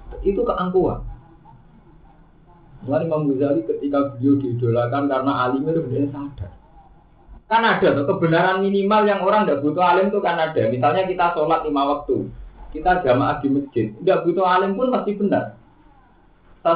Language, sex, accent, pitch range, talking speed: Indonesian, male, native, 130-180 Hz, 145 wpm